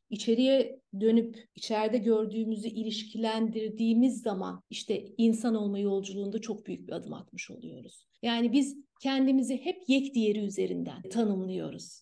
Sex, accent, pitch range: female, native, 210-245 Hz